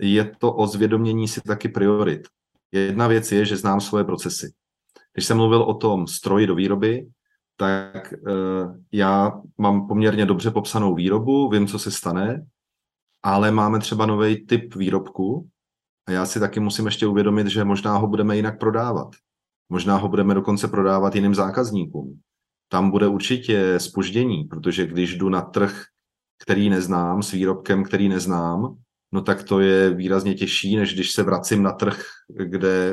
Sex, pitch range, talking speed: male, 95-110 Hz, 160 wpm